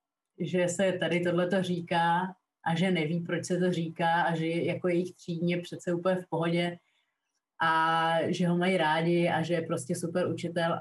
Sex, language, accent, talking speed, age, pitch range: female, Czech, native, 185 wpm, 20-39, 170-190 Hz